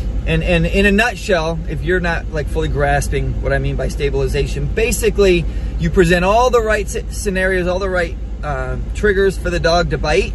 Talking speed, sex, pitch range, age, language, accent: 190 wpm, male, 130-175 Hz, 30-49, English, American